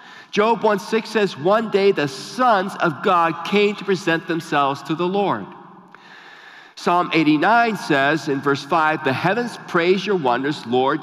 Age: 50-69